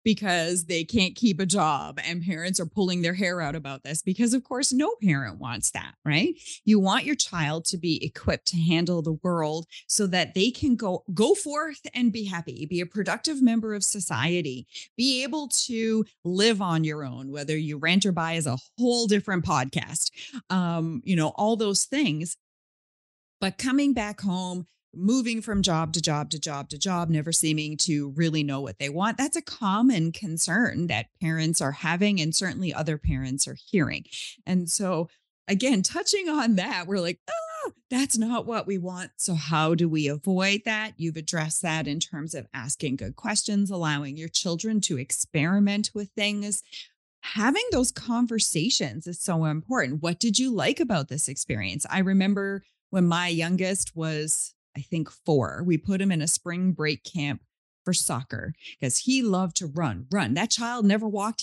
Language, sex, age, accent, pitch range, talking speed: English, female, 30-49, American, 160-215 Hz, 180 wpm